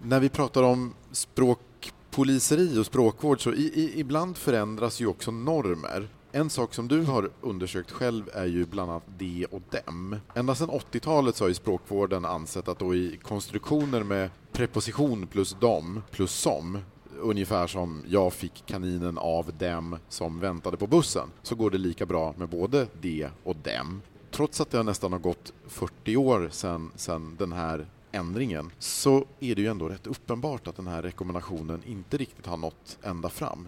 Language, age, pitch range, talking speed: Swedish, 30-49, 90-120 Hz, 175 wpm